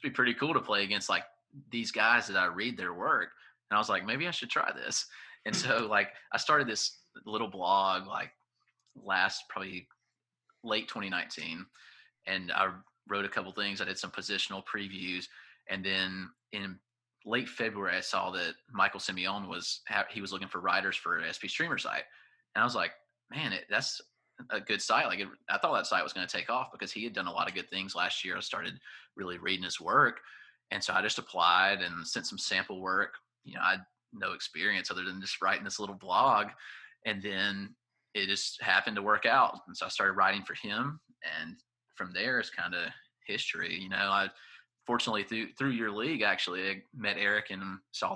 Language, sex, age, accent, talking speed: English, male, 30-49, American, 205 wpm